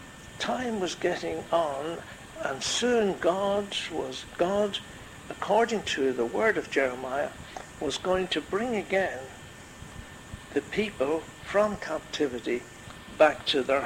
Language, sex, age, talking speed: English, male, 60-79, 115 wpm